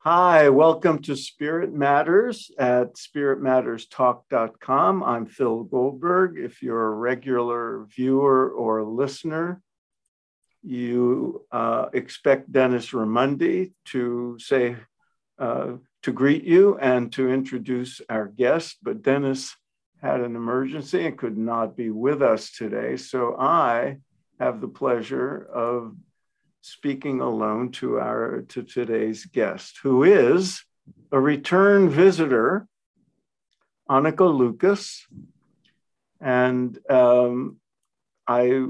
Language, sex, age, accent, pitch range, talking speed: English, male, 60-79, American, 120-145 Hz, 105 wpm